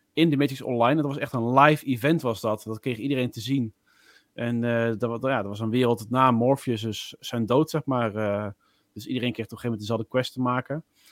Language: Dutch